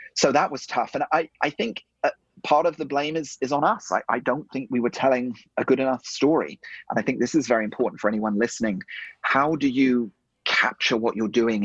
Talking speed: 230 wpm